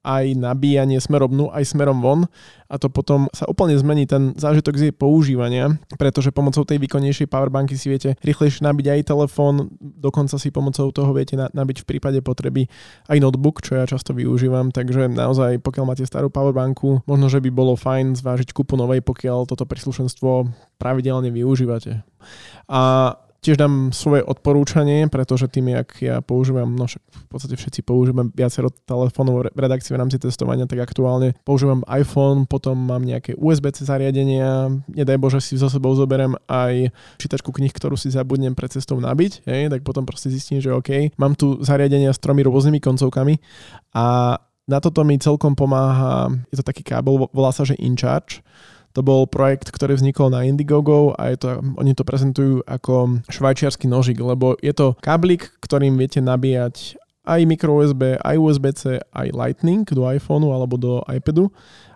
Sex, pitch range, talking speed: male, 130-140 Hz, 165 wpm